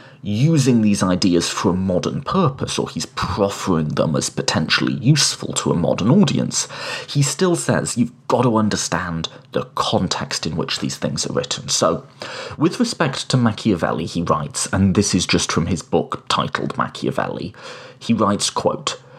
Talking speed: 165 wpm